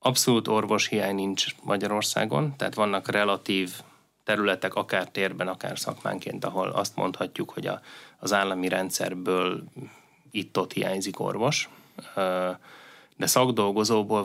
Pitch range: 95-110 Hz